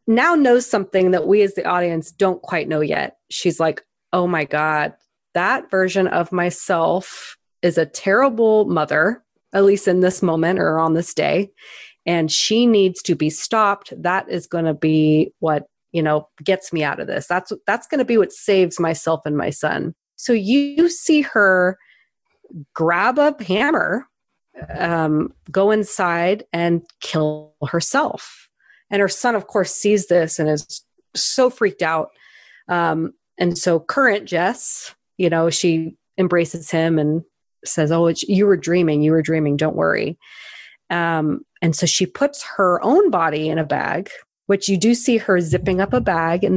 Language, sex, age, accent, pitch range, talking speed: English, female, 30-49, American, 165-200 Hz, 170 wpm